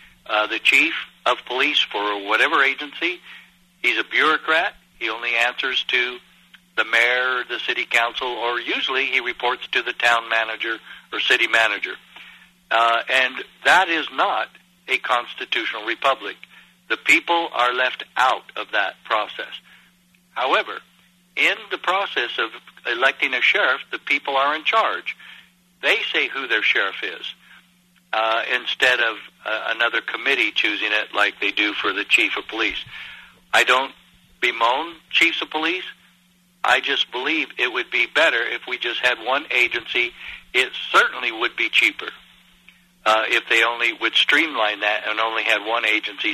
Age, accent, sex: 60-79, American, male